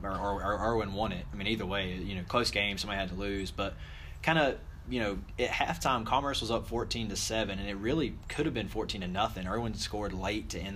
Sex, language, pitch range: male, English, 95-110 Hz